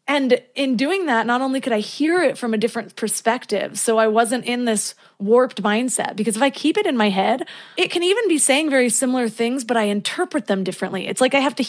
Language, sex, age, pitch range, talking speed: English, female, 20-39, 215-270 Hz, 240 wpm